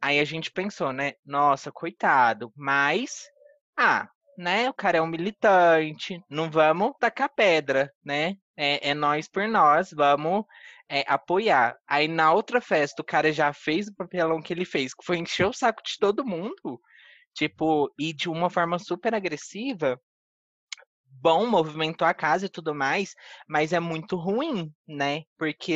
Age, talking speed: 20-39, 160 wpm